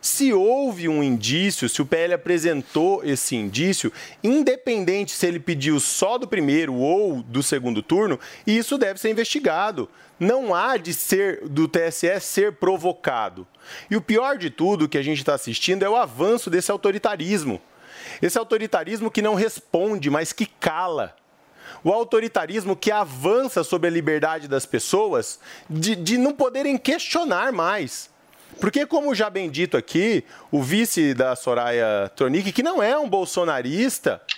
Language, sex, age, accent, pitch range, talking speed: Portuguese, male, 30-49, Brazilian, 165-250 Hz, 150 wpm